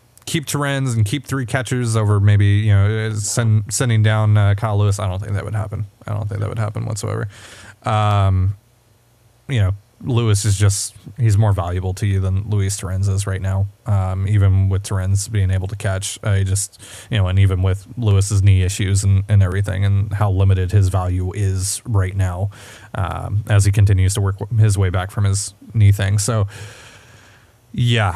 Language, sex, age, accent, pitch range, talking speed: English, male, 20-39, American, 100-110 Hz, 190 wpm